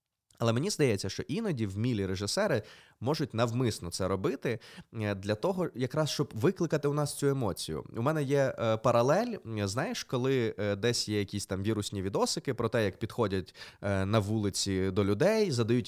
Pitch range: 100-140 Hz